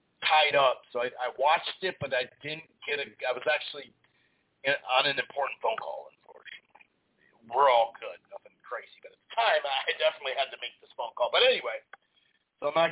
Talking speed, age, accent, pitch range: 205 wpm, 40-59, American, 140-210 Hz